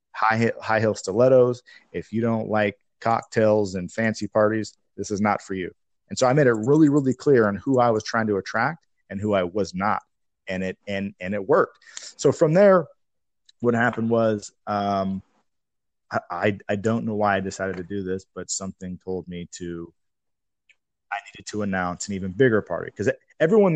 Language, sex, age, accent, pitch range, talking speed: English, male, 30-49, American, 95-125 Hz, 190 wpm